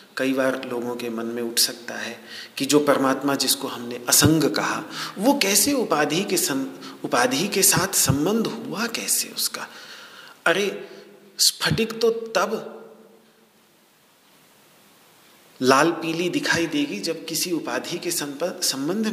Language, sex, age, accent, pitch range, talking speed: Hindi, male, 40-59, native, 150-220 Hz, 130 wpm